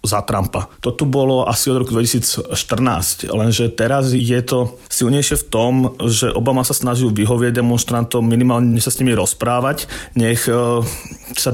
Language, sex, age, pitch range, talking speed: Slovak, male, 30-49, 115-130 Hz, 150 wpm